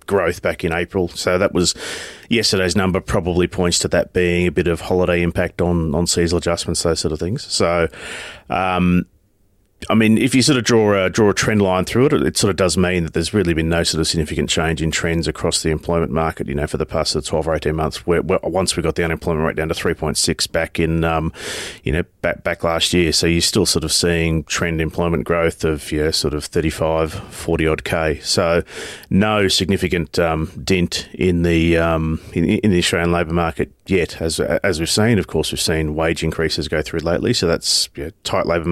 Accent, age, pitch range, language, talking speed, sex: Australian, 30-49, 80-95 Hz, English, 230 wpm, male